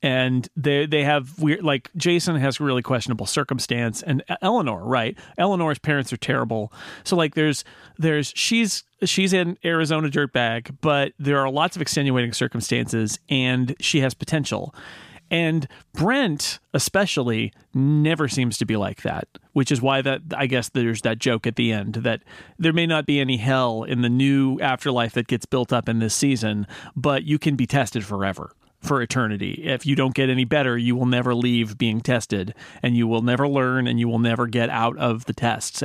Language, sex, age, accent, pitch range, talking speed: English, male, 40-59, American, 125-155 Hz, 185 wpm